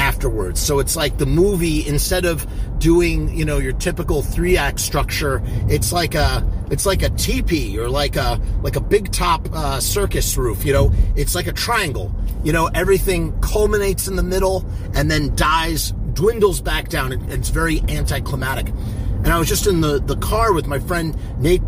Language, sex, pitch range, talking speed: English, male, 105-175 Hz, 190 wpm